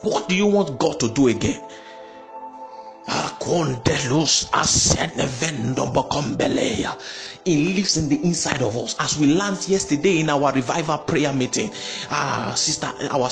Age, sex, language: 50-69, male, English